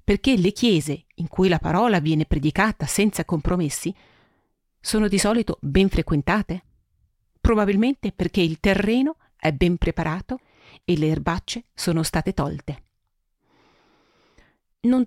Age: 40-59